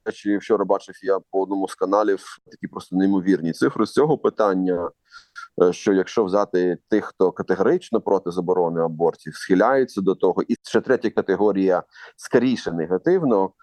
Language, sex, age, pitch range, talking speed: Ukrainian, male, 30-49, 90-130 Hz, 145 wpm